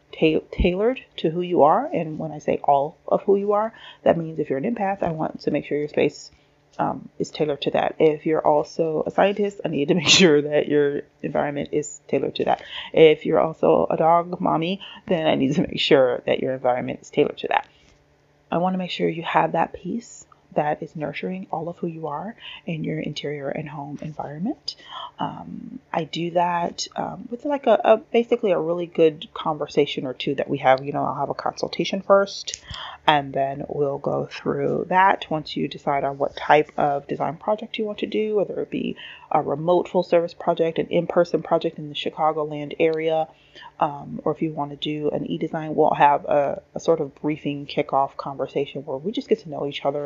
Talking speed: 210 wpm